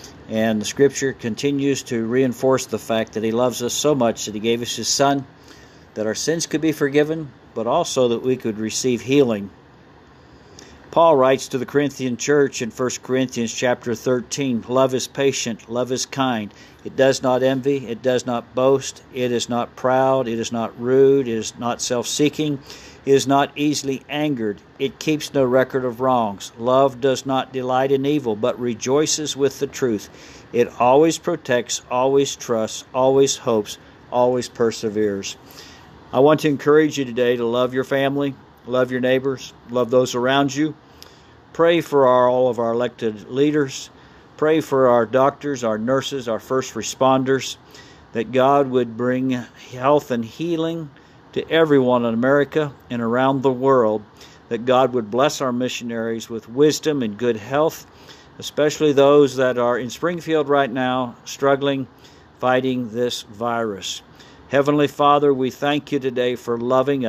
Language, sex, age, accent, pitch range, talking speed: English, male, 50-69, American, 120-140 Hz, 160 wpm